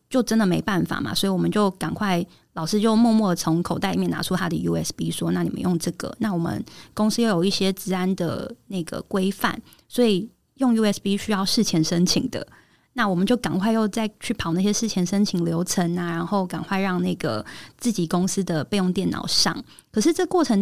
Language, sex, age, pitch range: Chinese, female, 20-39, 180-215 Hz